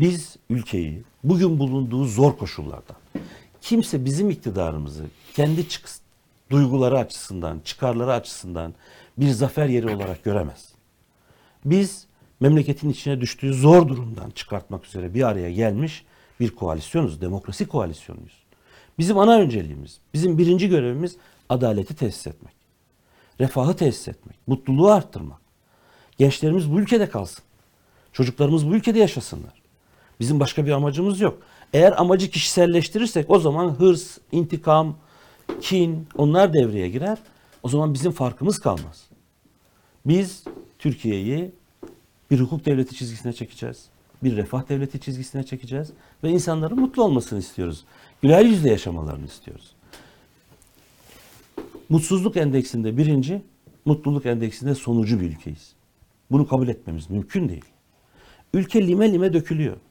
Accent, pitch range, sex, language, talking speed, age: native, 110-170 Hz, male, Turkish, 115 wpm, 60-79